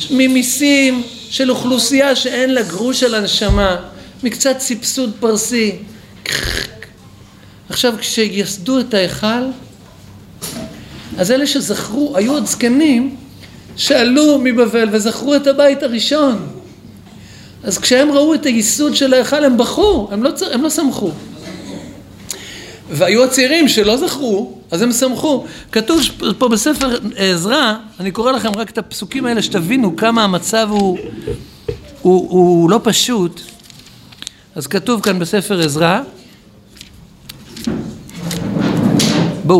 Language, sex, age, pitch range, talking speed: Hebrew, male, 50-69, 190-260 Hz, 110 wpm